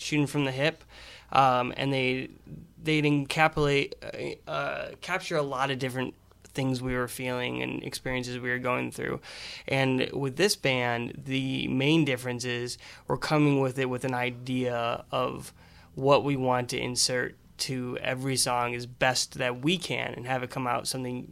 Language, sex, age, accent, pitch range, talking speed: English, male, 20-39, American, 125-140 Hz, 170 wpm